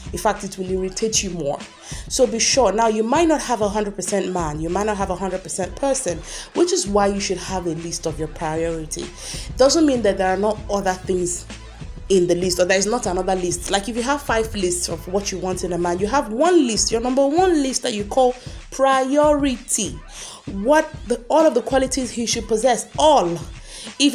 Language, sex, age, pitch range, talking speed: English, female, 30-49, 195-300 Hz, 225 wpm